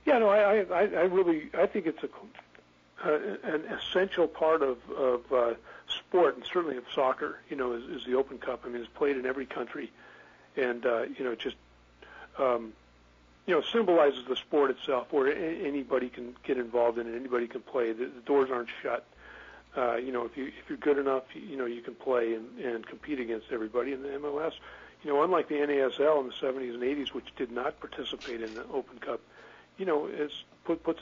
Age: 50-69